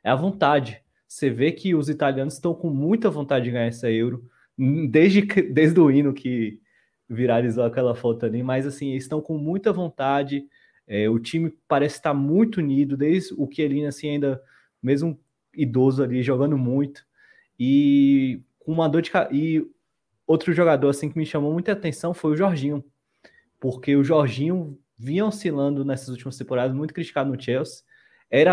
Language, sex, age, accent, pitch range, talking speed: Portuguese, male, 20-39, Brazilian, 130-160 Hz, 165 wpm